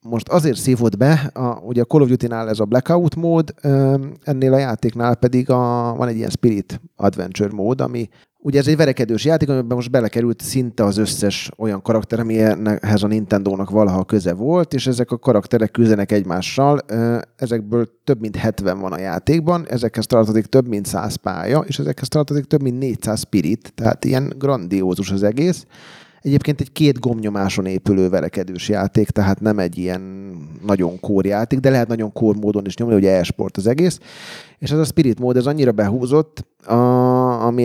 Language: Hungarian